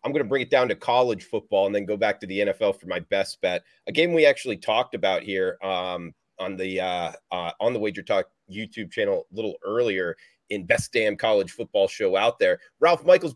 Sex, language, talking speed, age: male, English, 230 wpm, 30-49